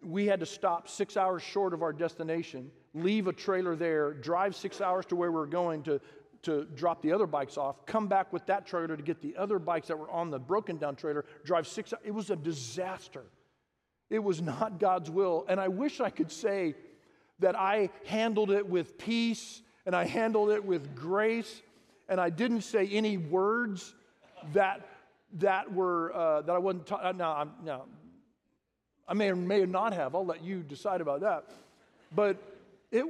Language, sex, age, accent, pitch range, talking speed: English, male, 40-59, American, 160-205 Hz, 190 wpm